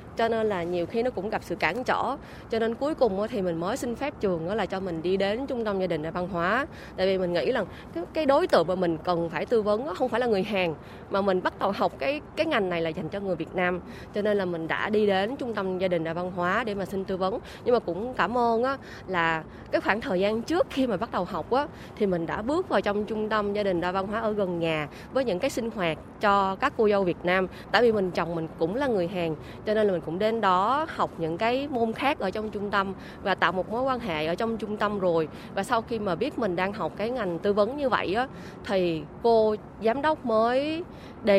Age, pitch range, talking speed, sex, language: 20-39, 180-230 Hz, 270 wpm, female, Vietnamese